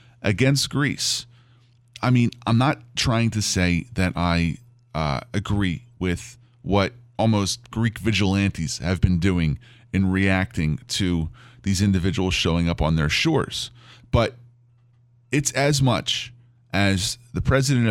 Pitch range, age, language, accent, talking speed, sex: 105-130 Hz, 30-49, English, American, 125 wpm, male